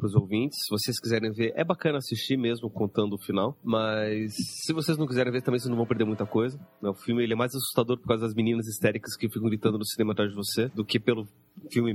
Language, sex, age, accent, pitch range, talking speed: Portuguese, male, 30-49, Brazilian, 110-145 Hz, 250 wpm